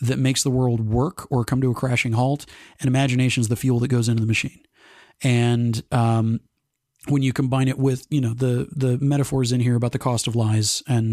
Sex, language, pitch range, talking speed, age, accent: male, English, 120-135 Hz, 220 wpm, 30-49, American